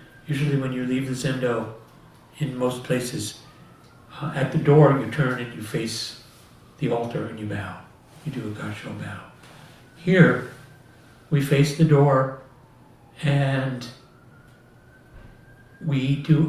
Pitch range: 125-155 Hz